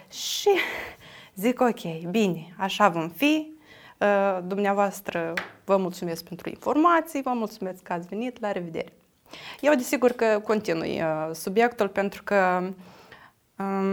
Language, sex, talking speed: Romanian, female, 110 wpm